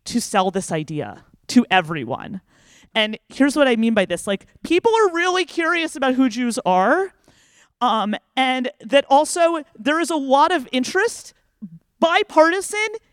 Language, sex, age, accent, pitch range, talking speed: English, male, 30-49, American, 195-275 Hz, 150 wpm